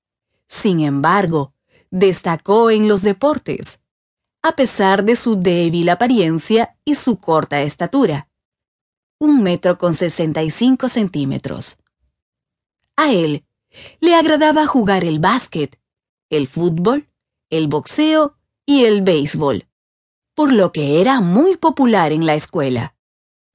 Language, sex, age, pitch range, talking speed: Spanish, female, 30-49, 160-255 Hz, 110 wpm